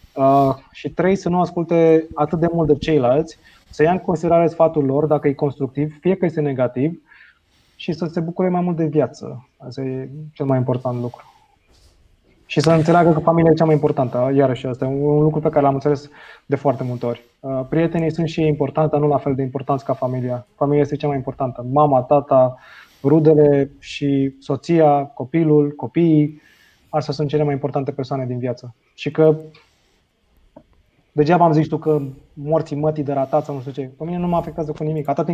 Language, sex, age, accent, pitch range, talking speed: Romanian, male, 20-39, native, 140-160 Hz, 195 wpm